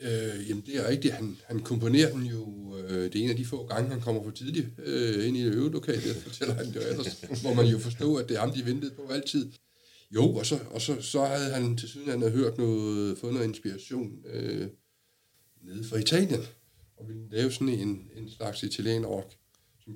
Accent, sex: native, male